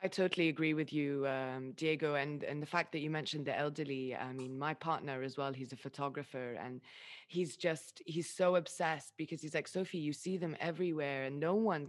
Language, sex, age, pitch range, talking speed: English, female, 20-39, 140-170 Hz, 210 wpm